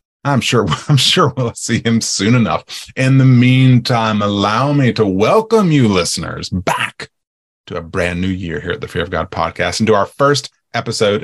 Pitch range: 95-130 Hz